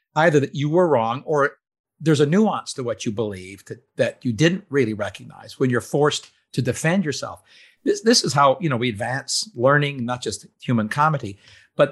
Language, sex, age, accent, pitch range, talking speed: English, male, 50-69, American, 120-160 Hz, 190 wpm